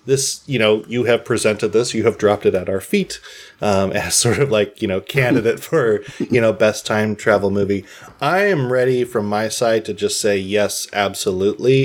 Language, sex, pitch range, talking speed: English, male, 110-135 Hz, 205 wpm